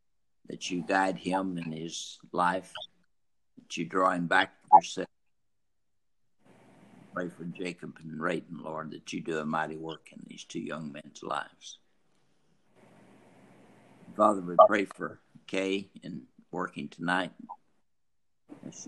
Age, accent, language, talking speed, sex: 60-79, American, English, 130 wpm, male